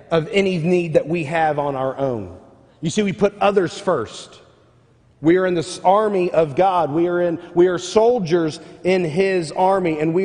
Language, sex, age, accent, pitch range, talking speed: English, male, 40-59, American, 155-200 Hz, 195 wpm